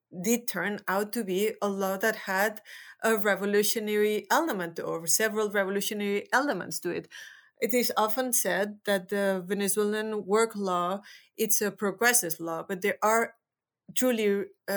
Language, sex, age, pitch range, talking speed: English, female, 30-49, 190-220 Hz, 145 wpm